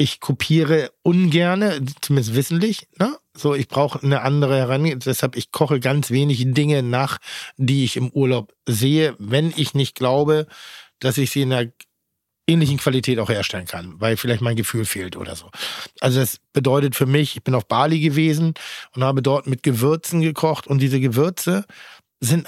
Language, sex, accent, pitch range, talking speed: German, male, German, 130-150 Hz, 170 wpm